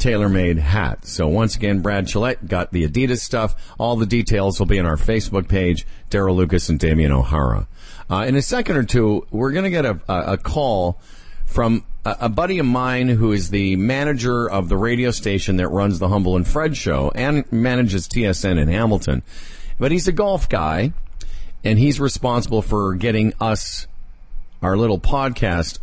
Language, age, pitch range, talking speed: English, 50-69, 90-125 Hz, 180 wpm